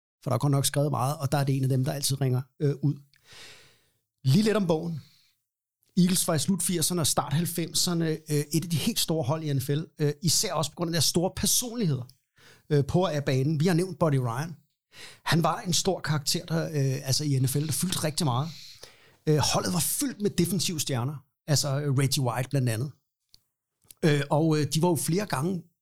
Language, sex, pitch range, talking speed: Danish, male, 135-170 Hz, 210 wpm